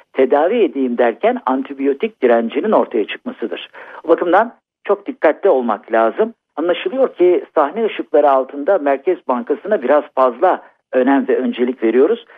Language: Turkish